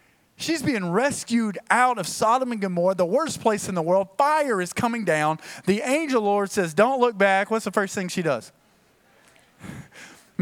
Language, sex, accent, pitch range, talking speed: English, male, American, 175-230 Hz, 180 wpm